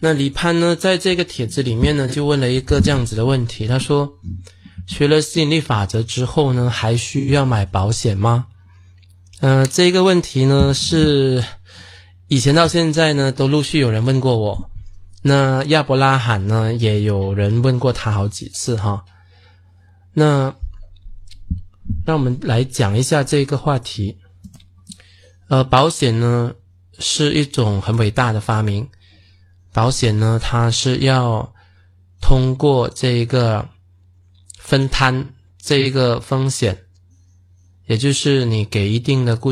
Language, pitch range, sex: Chinese, 95-135 Hz, male